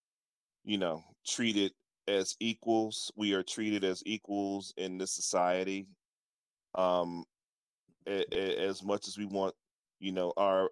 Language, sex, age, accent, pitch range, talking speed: English, male, 30-49, American, 90-100 Hz, 135 wpm